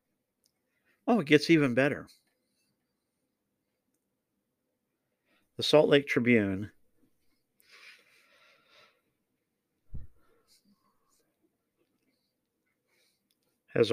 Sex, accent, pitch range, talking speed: male, American, 100-120 Hz, 45 wpm